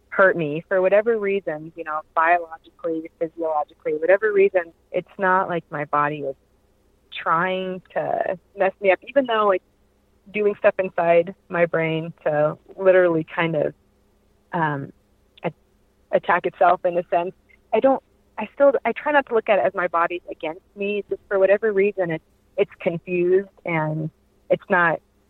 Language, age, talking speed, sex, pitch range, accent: English, 30-49, 155 wpm, female, 150-190 Hz, American